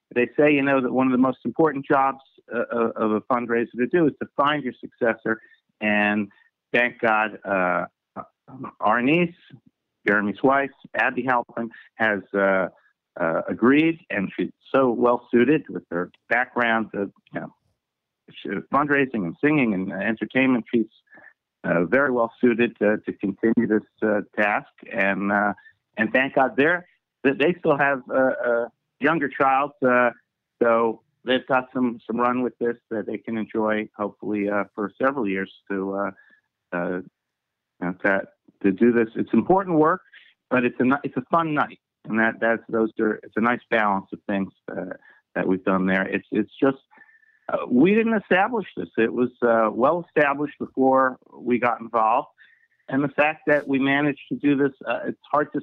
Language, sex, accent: English, male, American